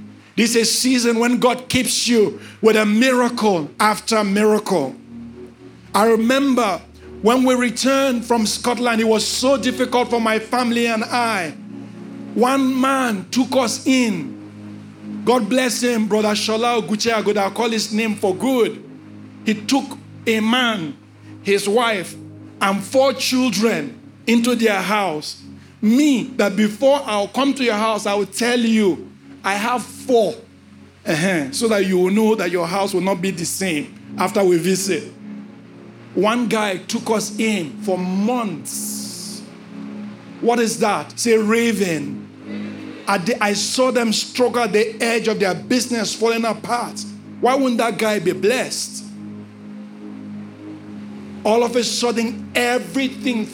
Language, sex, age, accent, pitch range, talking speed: English, male, 50-69, Nigerian, 190-240 Hz, 140 wpm